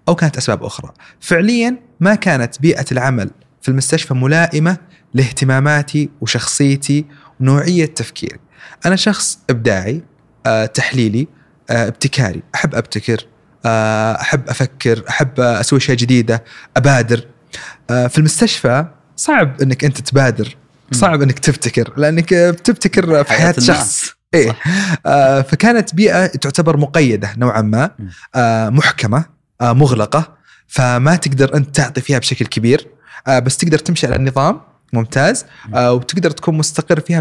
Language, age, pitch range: Arabic, 30-49, 125-165 Hz